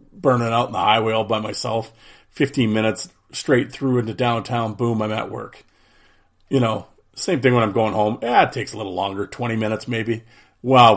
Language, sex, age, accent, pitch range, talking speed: English, male, 40-59, American, 105-130 Hz, 195 wpm